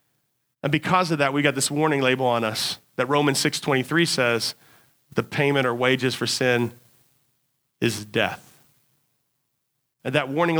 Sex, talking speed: male, 145 wpm